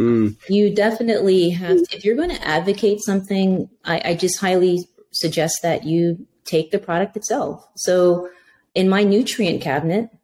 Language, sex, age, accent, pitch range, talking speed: English, female, 30-49, American, 150-200 Hz, 145 wpm